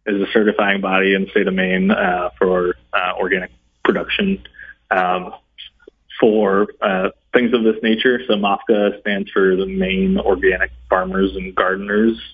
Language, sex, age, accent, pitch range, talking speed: English, male, 30-49, American, 100-120 Hz, 150 wpm